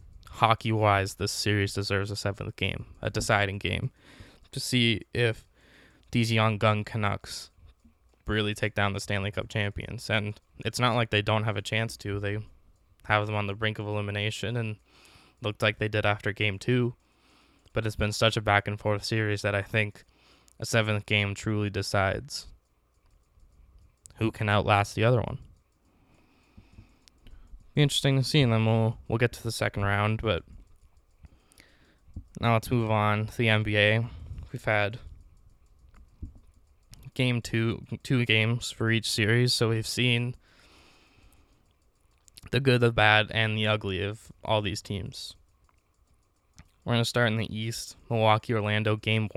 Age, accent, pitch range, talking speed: 20-39, American, 100-110 Hz, 150 wpm